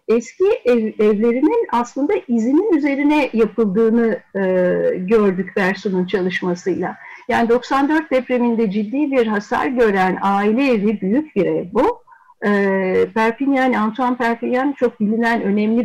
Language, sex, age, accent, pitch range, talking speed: Turkish, female, 60-79, native, 200-275 Hz, 115 wpm